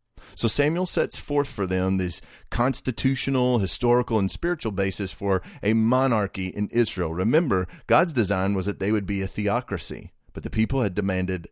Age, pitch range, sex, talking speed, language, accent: 30-49, 100-130 Hz, male, 165 wpm, English, American